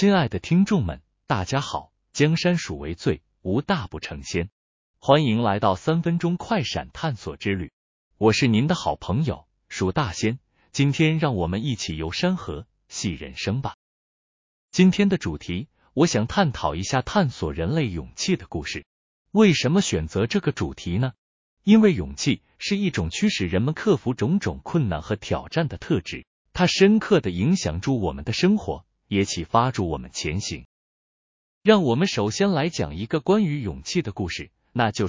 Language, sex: Chinese, male